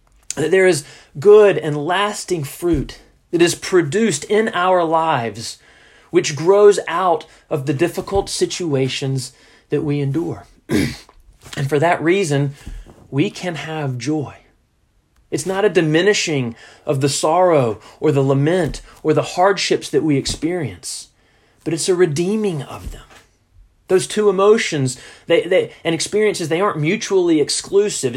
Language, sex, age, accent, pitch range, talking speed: English, male, 30-49, American, 135-185 Hz, 135 wpm